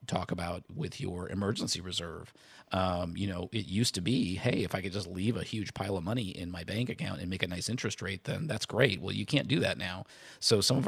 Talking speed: 255 wpm